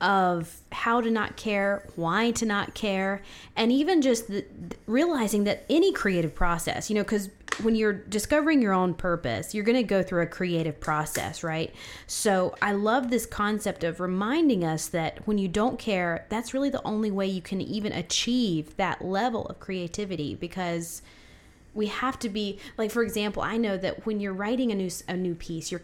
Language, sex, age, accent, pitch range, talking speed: English, female, 20-39, American, 175-230 Hz, 190 wpm